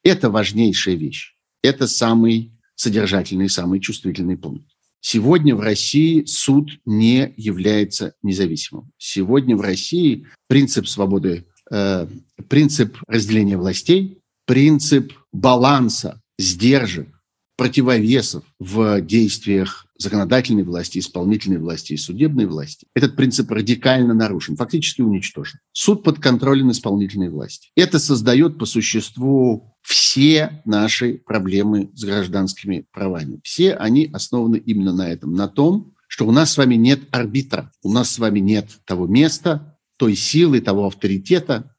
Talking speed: 125 wpm